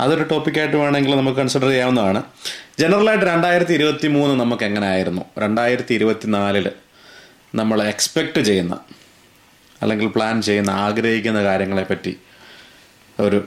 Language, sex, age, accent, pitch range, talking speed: Malayalam, male, 30-49, native, 105-145 Hz, 110 wpm